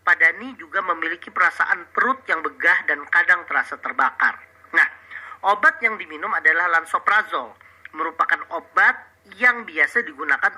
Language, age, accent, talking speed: Indonesian, 40-59, native, 125 wpm